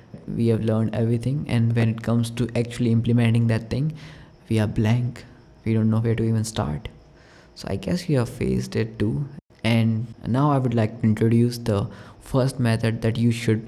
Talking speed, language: 195 wpm, English